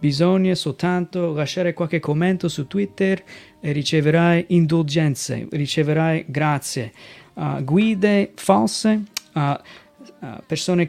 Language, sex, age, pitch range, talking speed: Italian, male, 30-49, 150-185 Hz, 100 wpm